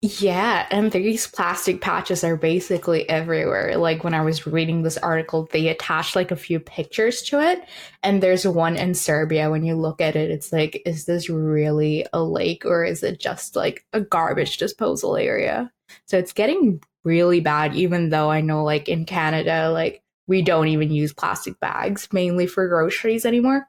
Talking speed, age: 180 wpm, 10-29